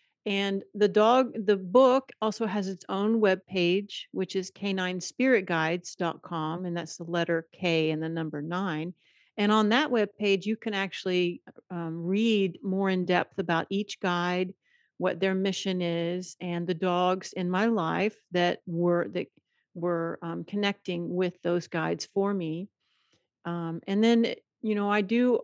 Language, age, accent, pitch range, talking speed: English, 50-69, American, 175-200 Hz, 160 wpm